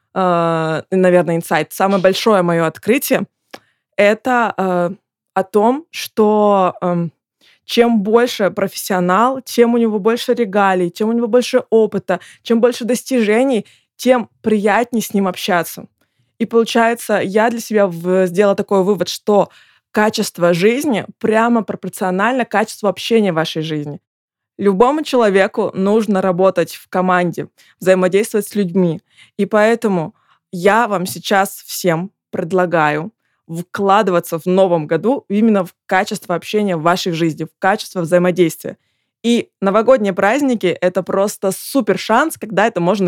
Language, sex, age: Russian, female, 20-39